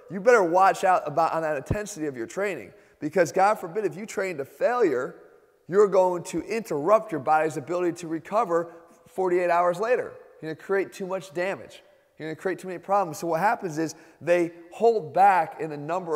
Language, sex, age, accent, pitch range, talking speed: English, male, 30-49, American, 165-215 Hz, 205 wpm